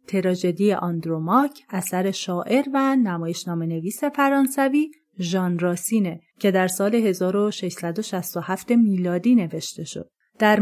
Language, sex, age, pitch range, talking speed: Persian, female, 30-49, 180-240 Hz, 105 wpm